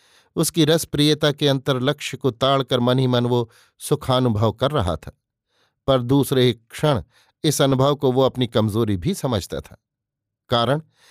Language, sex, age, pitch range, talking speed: Hindi, male, 50-69, 115-140 Hz, 145 wpm